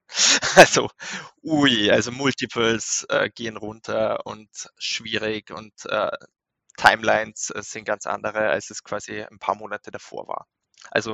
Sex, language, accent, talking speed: male, German, German, 135 wpm